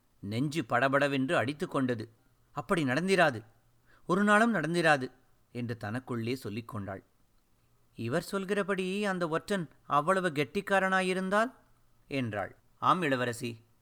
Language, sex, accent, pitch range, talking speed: Tamil, male, native, 125-195 Hz, 90 wpm